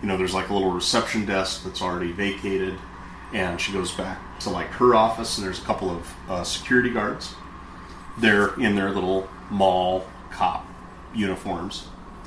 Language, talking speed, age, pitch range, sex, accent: English, 165 wpm, 30-49, 90-110 Hz, male, American